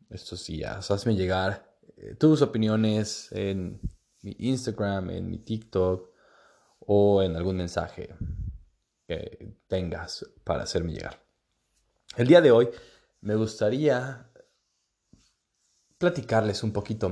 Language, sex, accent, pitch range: Spanish, male, Mexican, 95-115 Hz